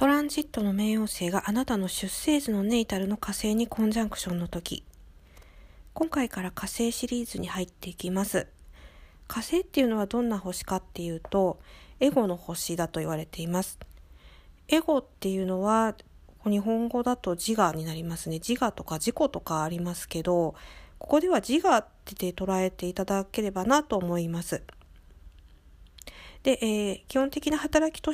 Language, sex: Japanese, female